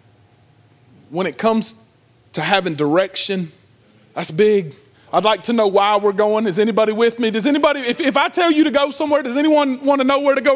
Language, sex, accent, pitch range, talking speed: English, male, American, 135-195 Hz, 210 wpm